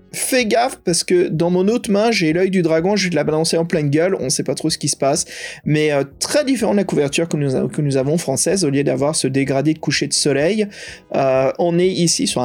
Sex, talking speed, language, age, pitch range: male, 255 wpm, French, 30-49, 135-175 Hz